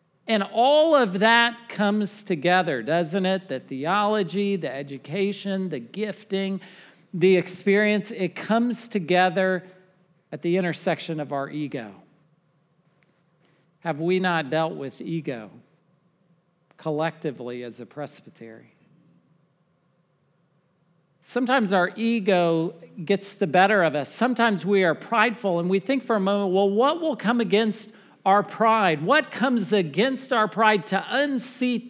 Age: 40-59